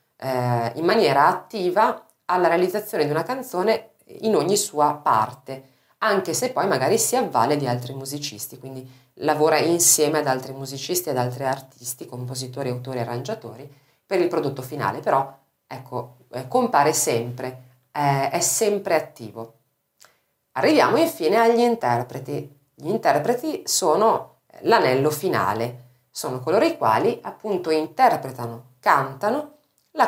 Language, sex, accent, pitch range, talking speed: Italian, female, native, 125-170 Hz, 120 wpm